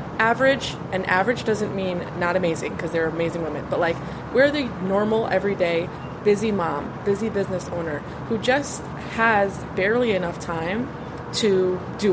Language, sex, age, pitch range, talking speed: English, female, 20-39, 170-205 Hz, 150 wpm